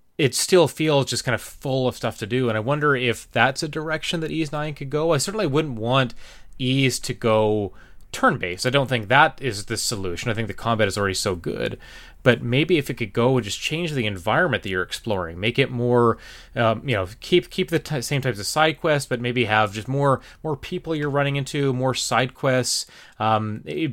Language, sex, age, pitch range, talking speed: English, male, 30-49, 110-145 Hz, 225 wpm